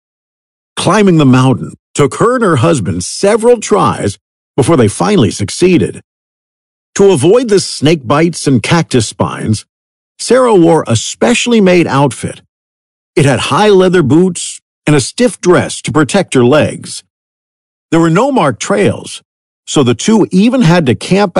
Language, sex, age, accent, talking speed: English, male, 50-69, American, 150 wpm